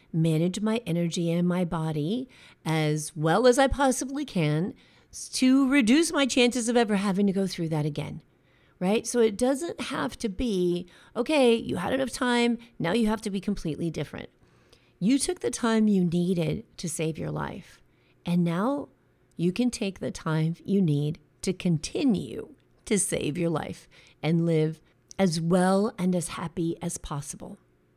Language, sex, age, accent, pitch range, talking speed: English, female, 40-59, American, 160-235 Hz, 165 wpm